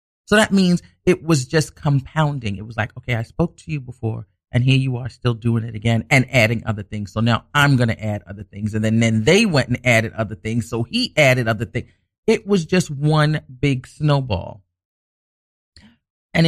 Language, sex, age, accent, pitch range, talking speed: English, male, 40-59, American, 110-160 Hz, 210 wpm